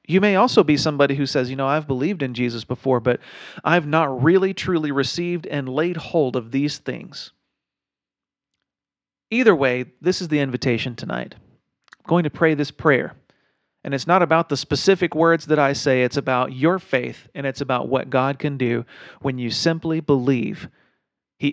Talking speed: 180 wpm